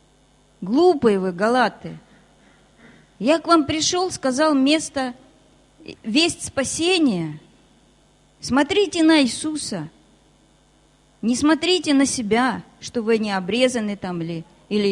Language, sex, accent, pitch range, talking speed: Russian, female, native, 200-280 Hz, 100 wpm